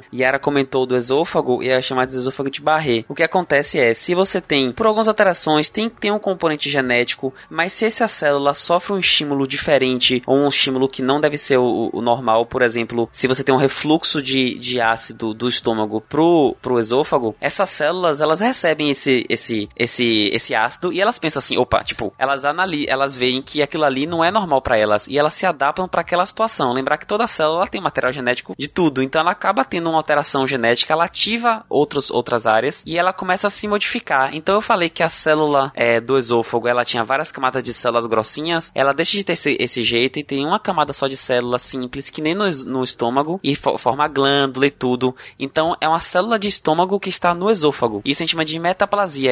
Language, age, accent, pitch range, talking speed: Portuguese, 20-39, Brazilian, 130-170 Hz, 220 wpm